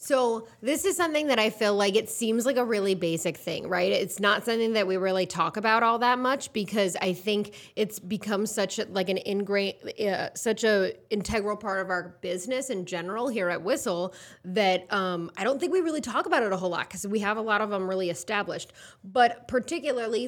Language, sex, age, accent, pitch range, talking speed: English, female, 20-39, American, 185-230 Hz, 220 wpm